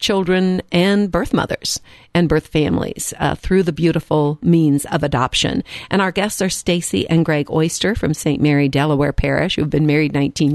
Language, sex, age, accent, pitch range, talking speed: English, female, 50-69, American, 155-185 Hz, 175 wpm